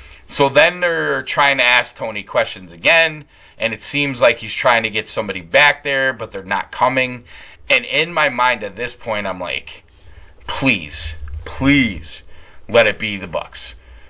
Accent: American